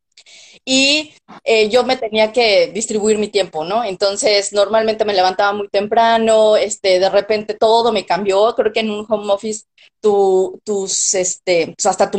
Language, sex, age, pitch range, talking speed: Spanish, female, 20-39, 190-225 Hz, 170 wpm